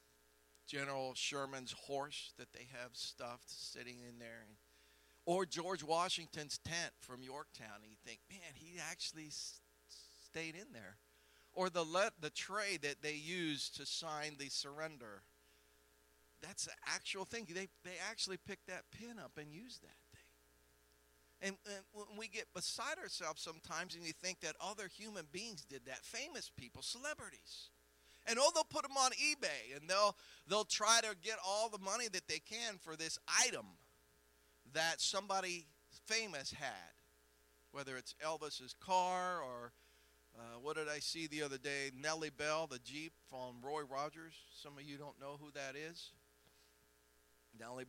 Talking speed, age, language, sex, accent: 160 wpm, 50-69, English, male, American